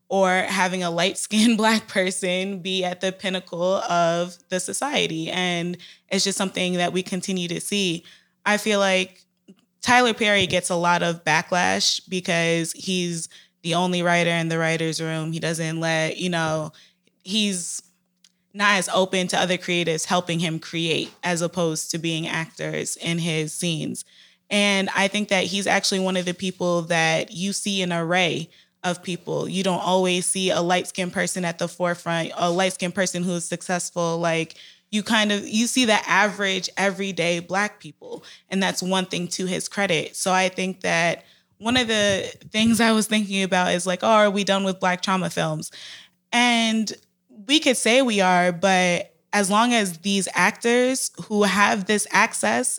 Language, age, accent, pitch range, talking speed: English, 20-39, American, 175-205 Hz, 175 wpm